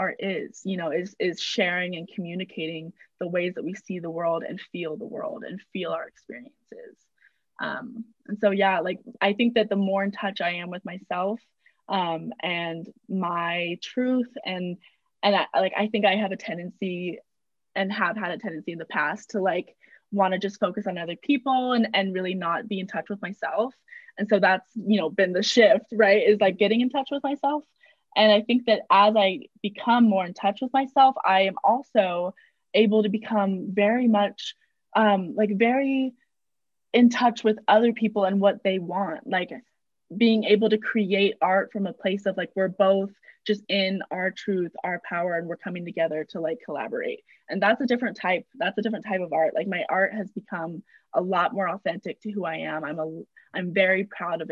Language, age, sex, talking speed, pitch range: English, 20-39, female, 200 wpm, 185-225 Hz